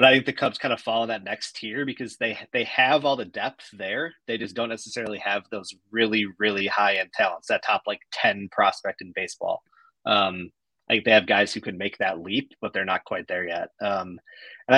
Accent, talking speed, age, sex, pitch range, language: American, 225 wpm, 30-49, male, 105-130 Hz, English